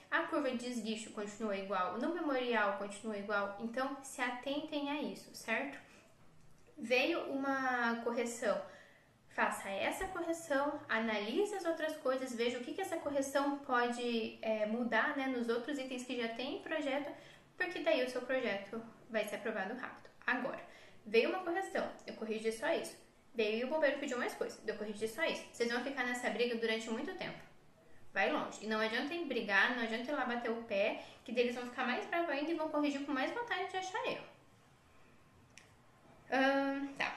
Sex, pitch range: female, 220-290 Hz